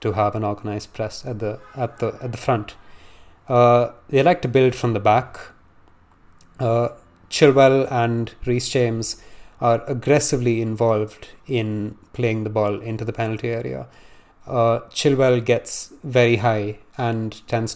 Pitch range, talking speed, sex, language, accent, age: 110-125 Hz, 145 wpm, male, English, Indian, 30-49